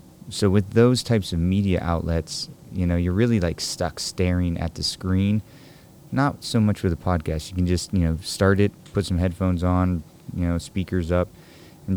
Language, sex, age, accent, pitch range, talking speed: English, male, 30-49, American, 85-100 Hz, 195 wpm